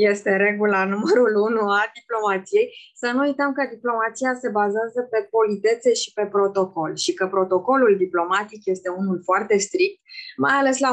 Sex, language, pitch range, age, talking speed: female, Romanian, 195-230 Hz, 20-39, 160 wpm